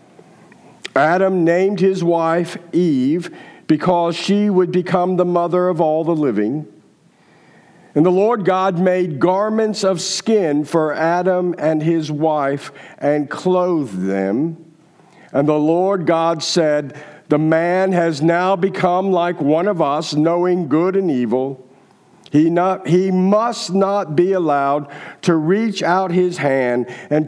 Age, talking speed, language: 50-69, 135 wpm, English